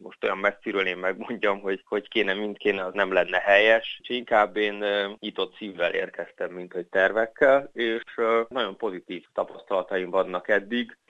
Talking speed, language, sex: 150 wpm, Hungarian, male